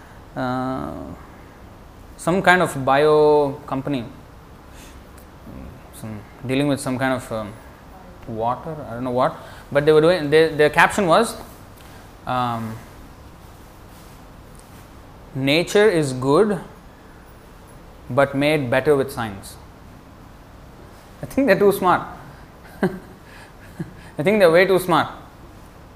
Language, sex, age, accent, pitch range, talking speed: English, male, 20-39, Indian, 105-155 Hz, 105 wpm